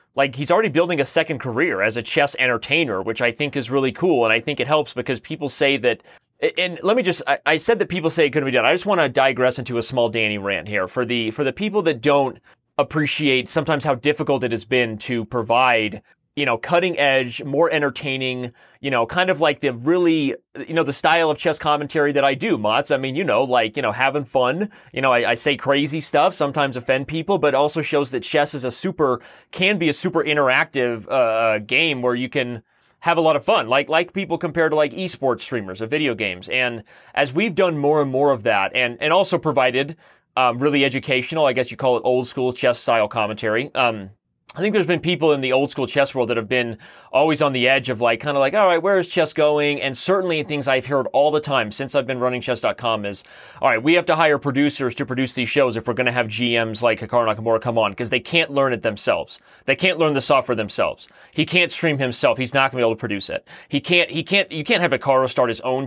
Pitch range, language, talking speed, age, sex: 125-155 Hz, English, 250 wpm, 30-49, male